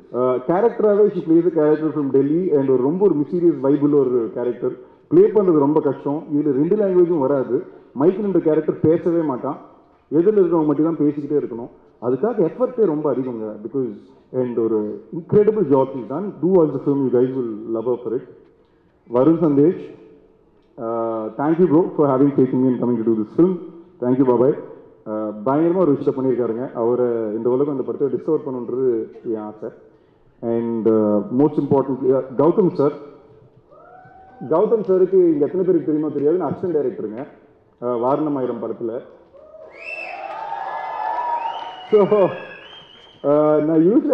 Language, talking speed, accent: Tamil, 155 wpm, native